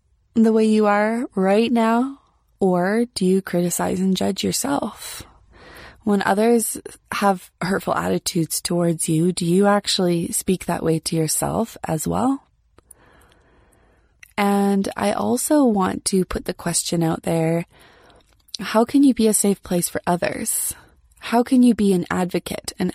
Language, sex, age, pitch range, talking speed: English, female, 20-39, 170-215 Hz, 145 wpm